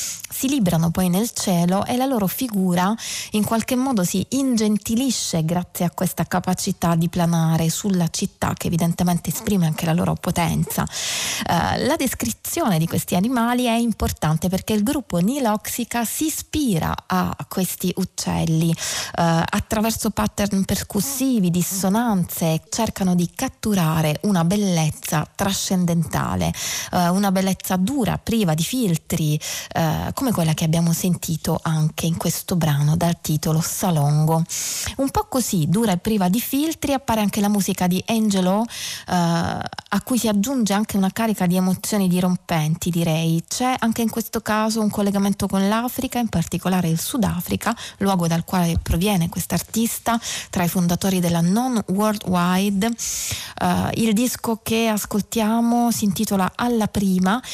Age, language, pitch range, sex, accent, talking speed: 20-39, Italian, 170-225 Hz, female, native, 140 wpm